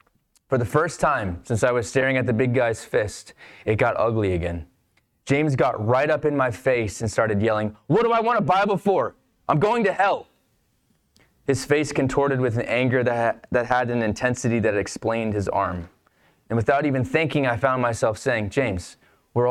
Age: 20-39